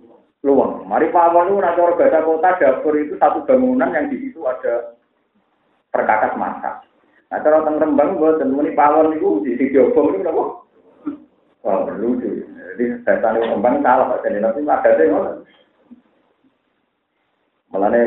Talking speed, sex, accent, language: 85 wpm, male, native, Indonesian